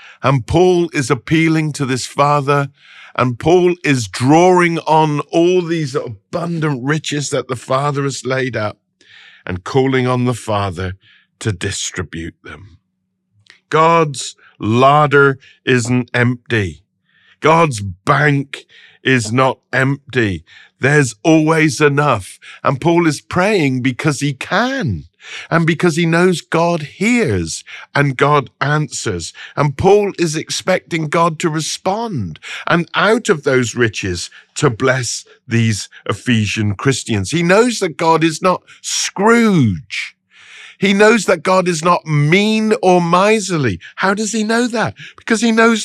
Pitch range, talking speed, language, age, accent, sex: 120-175 Hz, 130 wpm, English, 50-69, British, male